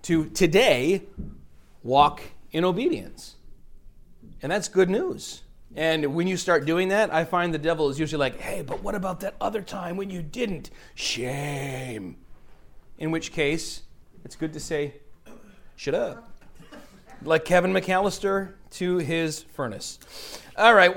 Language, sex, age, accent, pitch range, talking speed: English, male, 30-49, American, 140-195 Hz, 140 wpm